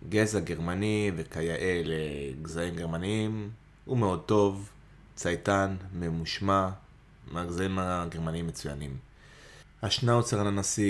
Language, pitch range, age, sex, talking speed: Hebrew, 80-100 Hz, 20-39, male, 95 wpm